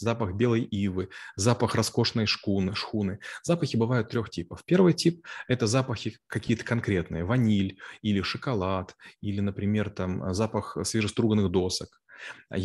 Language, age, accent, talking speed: Russian, 20-39, native, 135 wpm